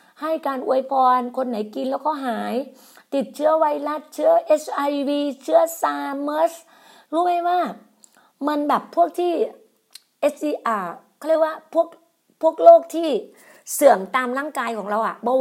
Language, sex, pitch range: Thai, female, 245-320 Hz